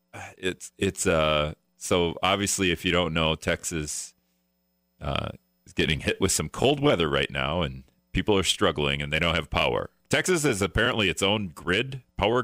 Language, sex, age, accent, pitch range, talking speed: English, male, 40-59, American, 80-110 Hz, 175 wpm